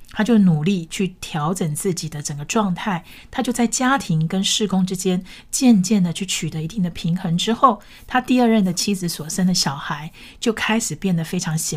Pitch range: 160-210 Hz